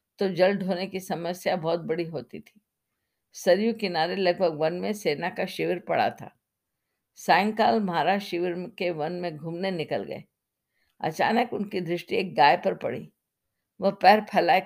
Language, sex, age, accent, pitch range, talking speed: Hindi, female, 50-69, native, 175-205 Hz, 155 wpm